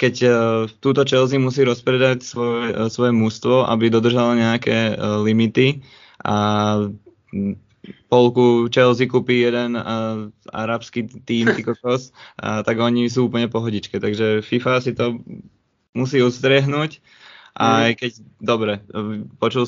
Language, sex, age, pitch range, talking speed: Slovak, male, 20-39, 110-125 Hz, 120 wpm